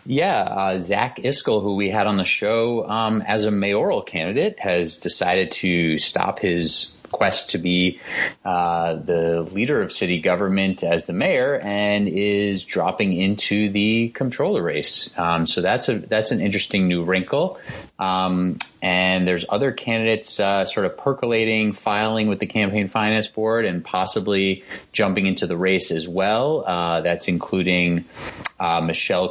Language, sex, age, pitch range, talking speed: English, male, 30-49, 90-105 Hz, 155 wpm